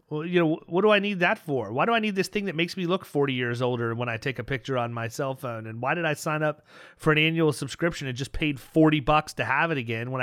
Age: 30-49